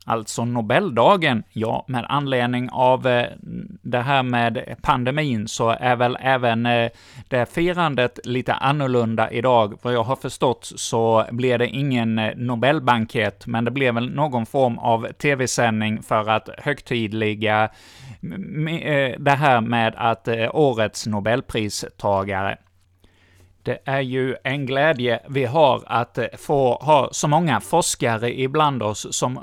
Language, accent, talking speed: Swedish, native, 125 wpm